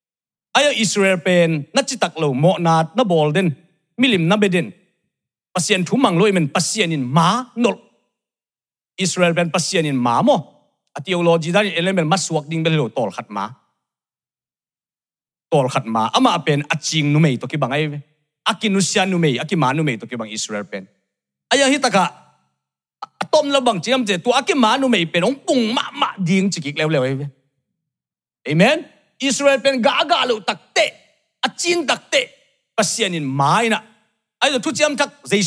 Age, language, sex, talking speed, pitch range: 40-59, English, male, 155 wpm, 155-230 Hz